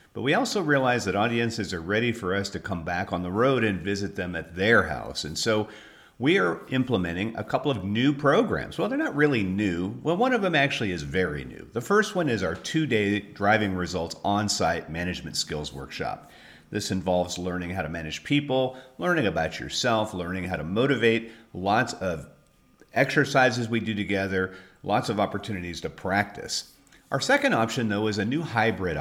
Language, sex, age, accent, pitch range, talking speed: English, male, 50-69, American, 90-120 Hz, 185 wpm